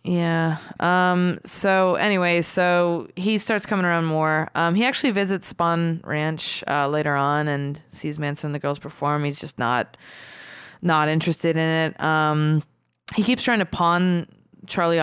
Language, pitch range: English, 150-180 Hz